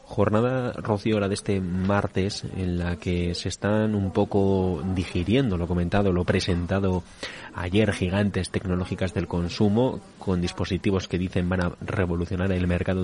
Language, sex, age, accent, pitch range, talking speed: Spanish, male, 20-39, Spanish, 90-100 Hz, 145 wpm